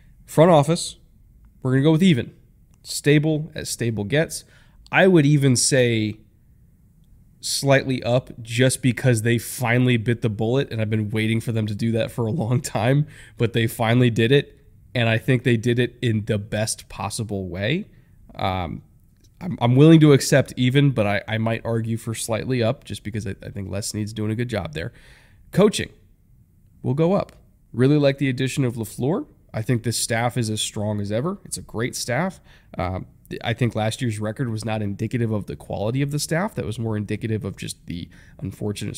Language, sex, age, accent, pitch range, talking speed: English, male, 20-39, American, 105-130 Hz, 195 wpm